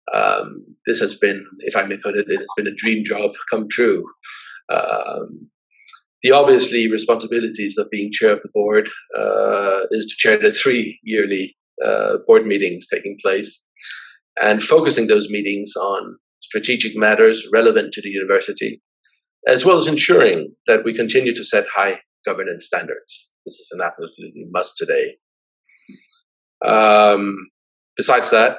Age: 40-59